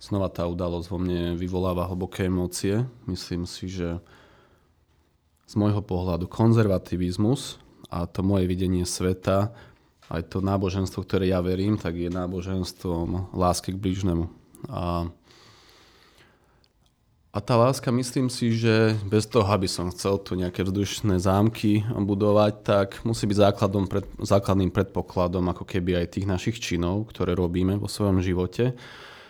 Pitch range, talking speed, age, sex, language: 90-105 Hz, 135 wpm, 20-39, male, Slovak